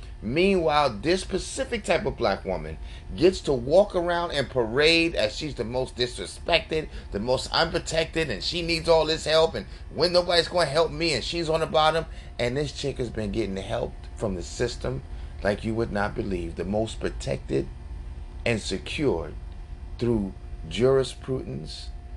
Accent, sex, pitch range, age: American, male, 85-140 Hz, 30-49